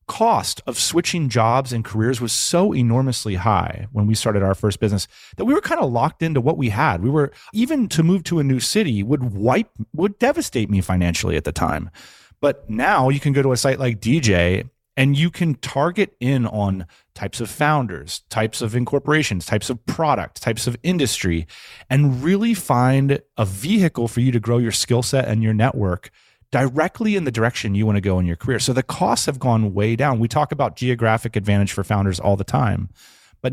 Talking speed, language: 210 wpm, English